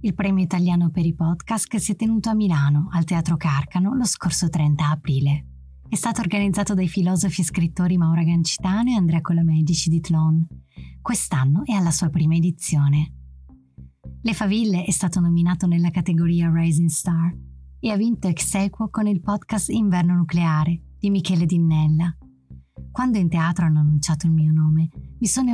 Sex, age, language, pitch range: female, 20-39, Italian, 160-195 Hz